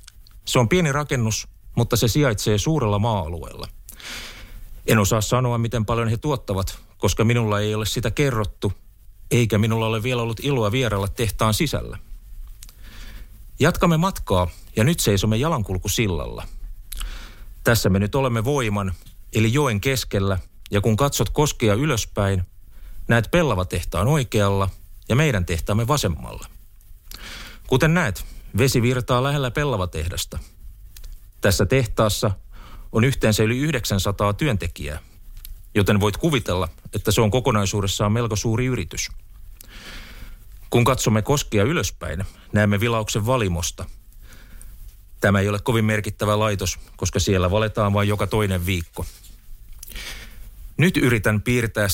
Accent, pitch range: native, 100-120 Hz